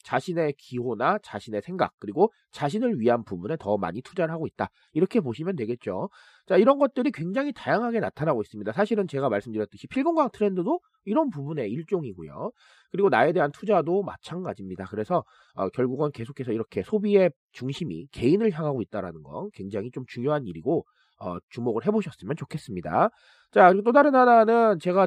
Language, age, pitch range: Korean, 30-49, 130-215 Hz